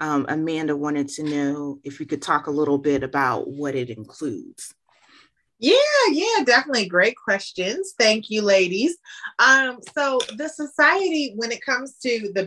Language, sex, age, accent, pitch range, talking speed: English, female, 30-49, American, 160-220 Hz, 160 wpm